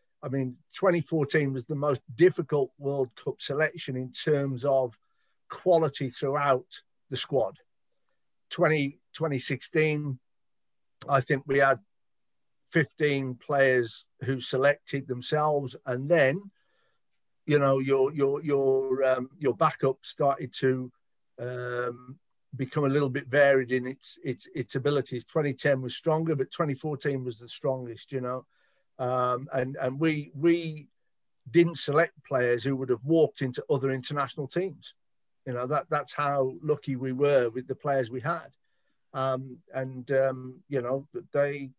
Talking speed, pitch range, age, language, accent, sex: 140 wpm, 130-150 Hz, 50-69, English, British, male